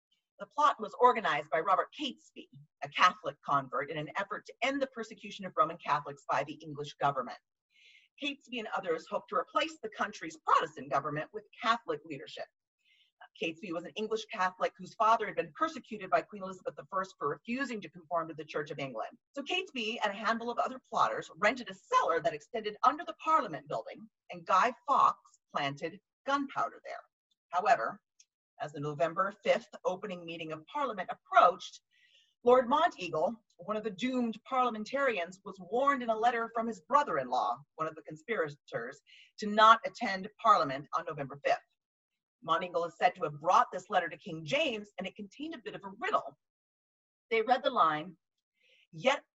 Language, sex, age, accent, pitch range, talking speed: English, female, 40-59, American, 170-260 Hz, 175 wpm